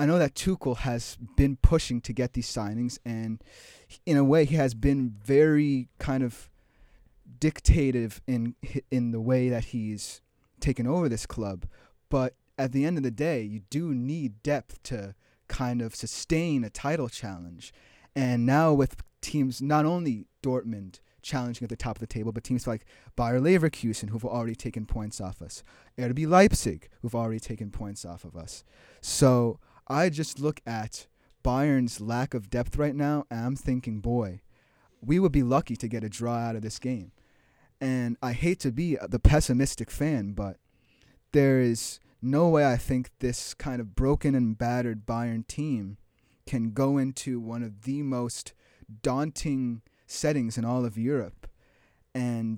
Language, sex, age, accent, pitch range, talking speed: English, male, 30-49, American, 115-140 Hz, 170 wpm